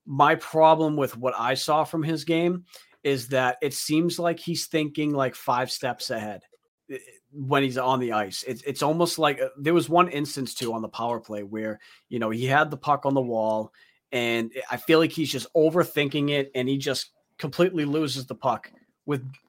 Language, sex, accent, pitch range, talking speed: English, male, American, 120-150 Hz, 200 wpm